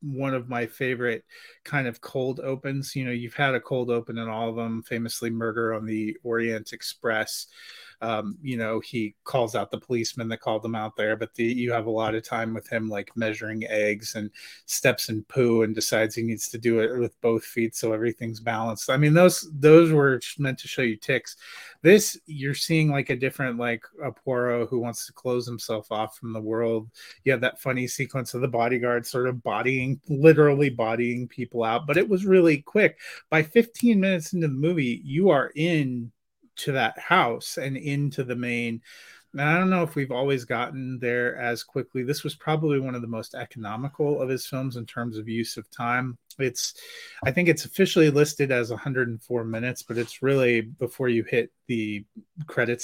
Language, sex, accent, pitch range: English, male, American, 115-140 Hz